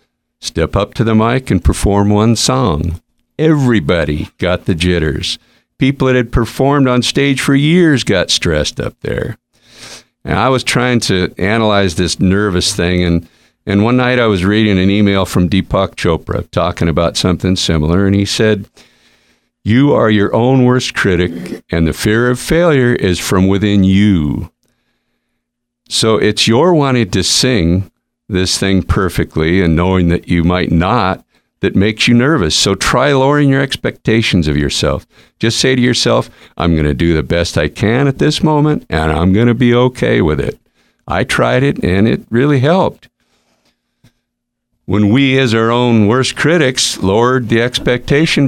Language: English